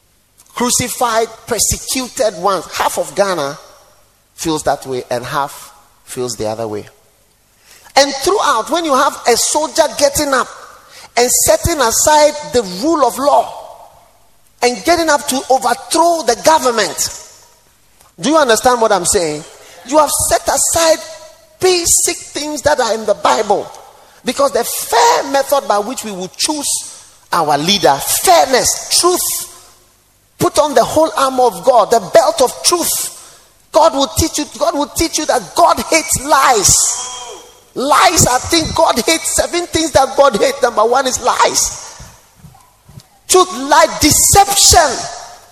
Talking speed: 140 wpm